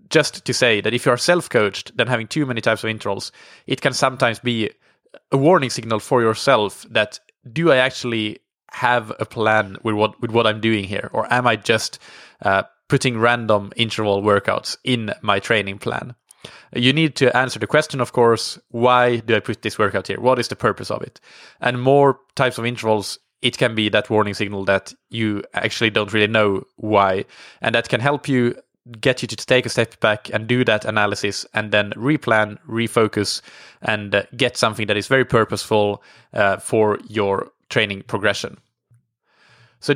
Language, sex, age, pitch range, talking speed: English, male, 20-39, 105-125 Hz, 185 wpm